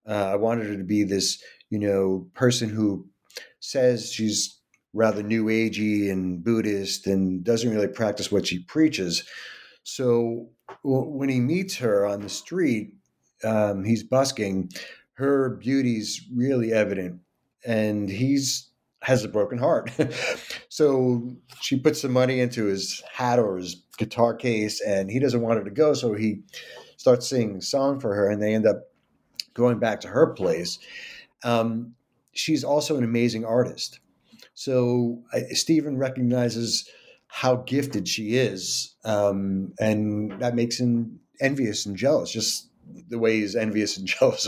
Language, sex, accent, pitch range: English, male, American, 105-125 Hz